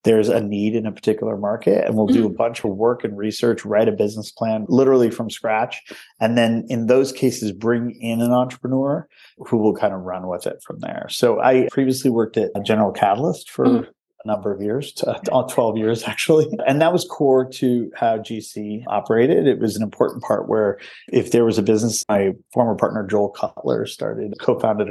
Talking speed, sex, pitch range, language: 200 wpm, male, 105-130 Hz, English